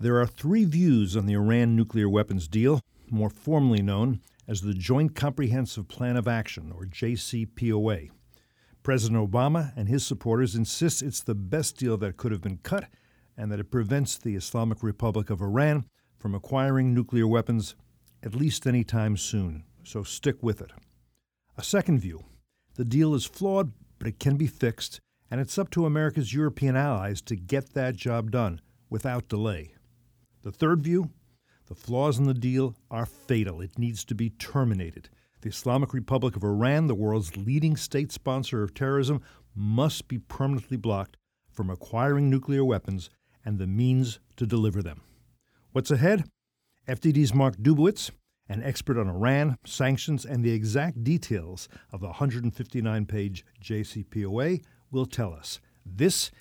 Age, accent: 50-69, American